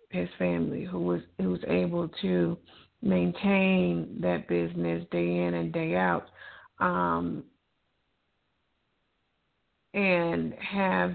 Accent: American